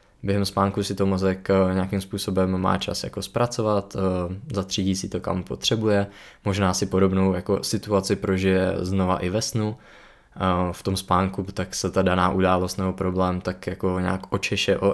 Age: 20-39